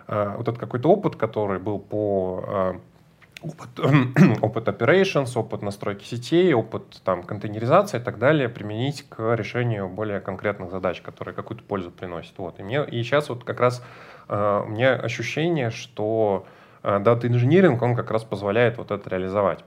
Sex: male